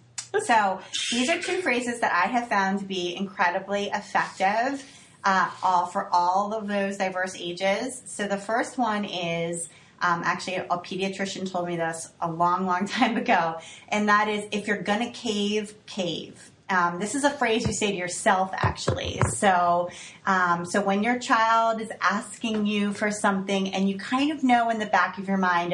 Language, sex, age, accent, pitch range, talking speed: English, female, 30-49, American, 175-220 Hz, 185 wpm